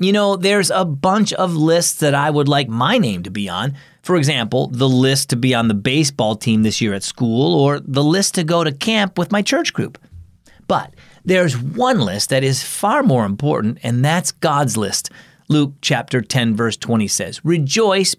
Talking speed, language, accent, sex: 200 wpm, English, American, male